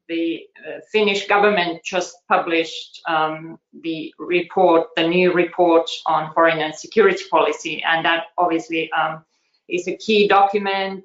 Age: 30-49